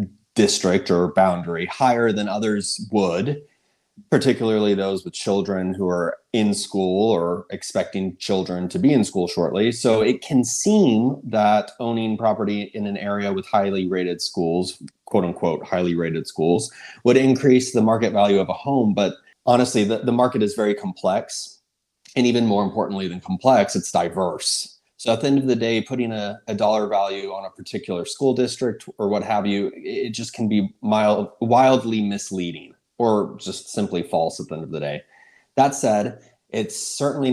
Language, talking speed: English, 170 wpm